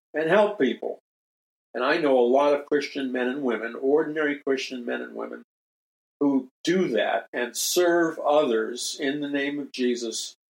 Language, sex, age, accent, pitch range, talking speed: English, male, 50-69, American, 120-140 Hz, 165 wpm